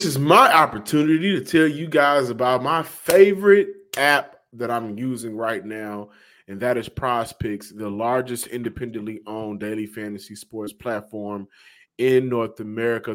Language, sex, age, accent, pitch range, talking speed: English, male, 20-39, American, 120-165 Hz, 145 wpm